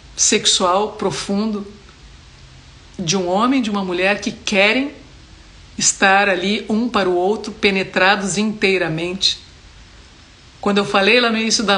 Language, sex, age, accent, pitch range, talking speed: Portuguese, female, 50-69, Brazilian, 180-215 Hz, 125 wpm